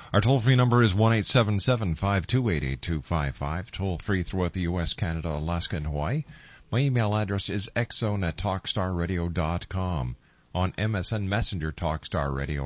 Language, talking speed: English, 135 wpm